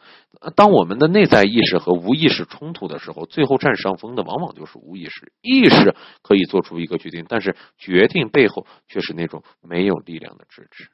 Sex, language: male, Chinese